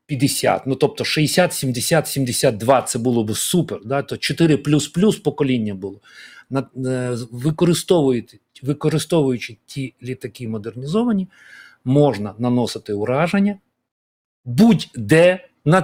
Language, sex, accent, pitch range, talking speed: Ukrainian, male, native, 130-165 Hz, 100 wpm